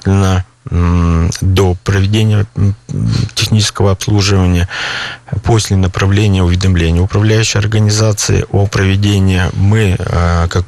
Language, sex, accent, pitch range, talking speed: Russian, male, native, 90-110 Hz, 75 wpm